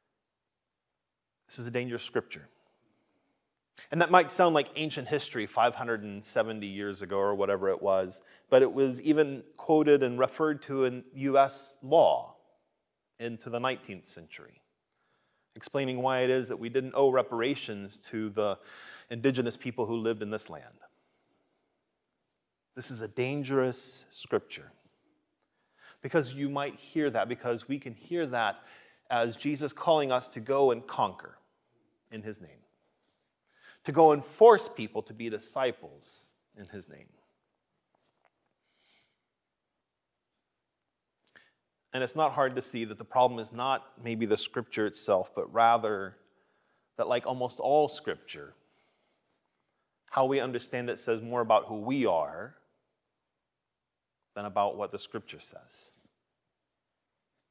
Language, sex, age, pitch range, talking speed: English, male, 30-49, 115-140 Hz, 135 wpm